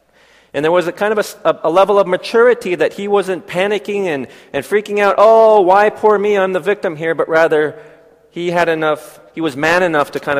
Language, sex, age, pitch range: Korean, male, 40-59, 150-195 Hz